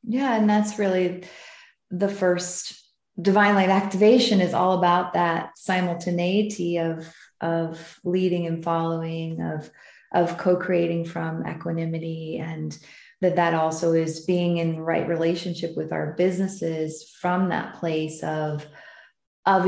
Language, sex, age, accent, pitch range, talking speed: English, female, 30-49, American, 165-190 Hz, 125 wpm